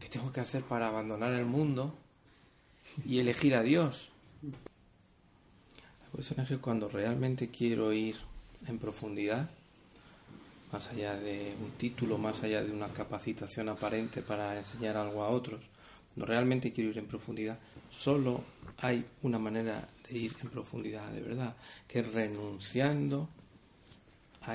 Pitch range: 110-130 Hz